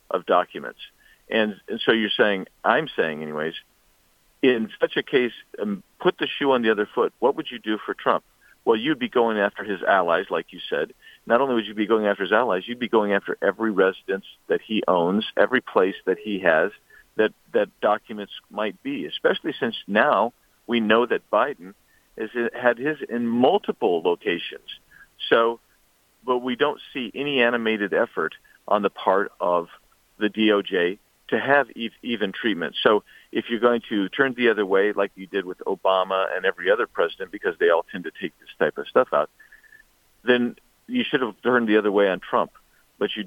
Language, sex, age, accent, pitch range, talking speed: English, male, 50-69, American, 100-135 Hz, 190 wpm